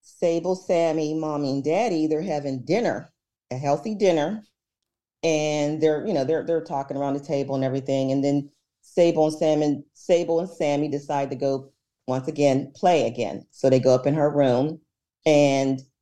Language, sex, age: English, female, 40-59